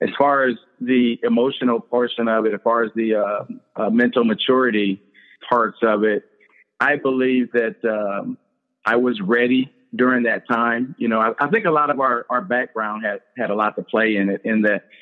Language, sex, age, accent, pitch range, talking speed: English, male, 50-69, American, 105-120 Hz, 200 wpm